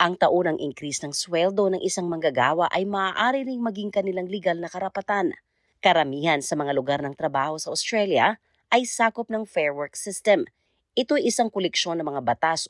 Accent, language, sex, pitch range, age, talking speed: native, Filipino, female, 150-215 Hz, 40-59, 170 wpm